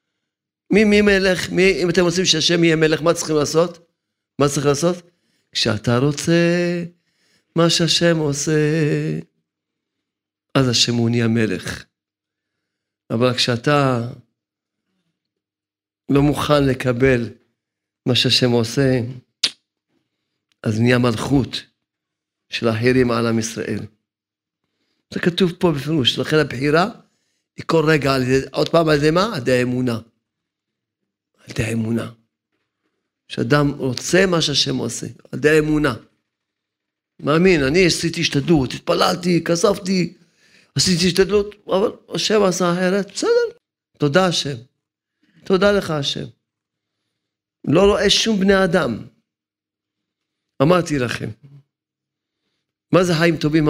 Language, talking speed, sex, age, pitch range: Hebrew, 110 wpm, male, 40-59, 120-170 Hz